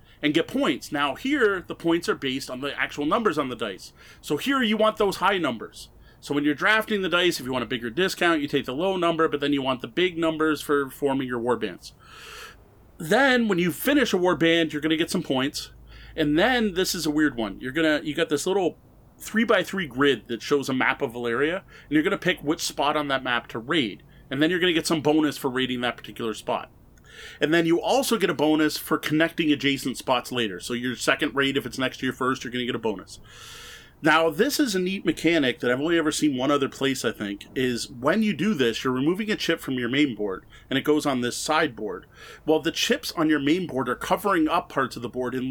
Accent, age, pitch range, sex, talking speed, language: American, 30-49, 130-175 Hz, male, 250 wpm, English